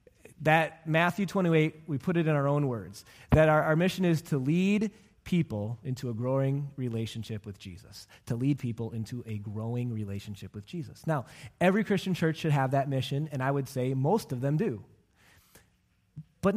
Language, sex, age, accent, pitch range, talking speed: English, male, 30-49, American, 135-220 Hz, 180 wpm